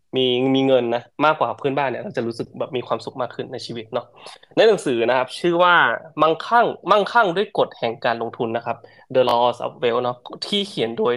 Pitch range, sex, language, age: 115-145 Hz, male, Thai, 20-39